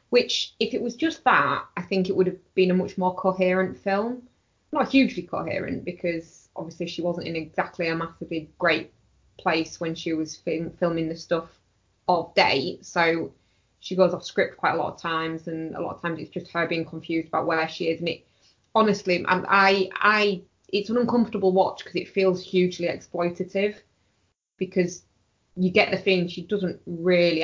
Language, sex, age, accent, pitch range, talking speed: English, female, 20-39, British, 165-190 Hz, 185 wpm